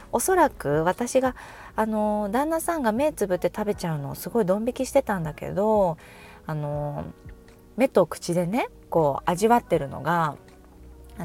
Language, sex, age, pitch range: Japanese, female, 20-39, 165-260 Hz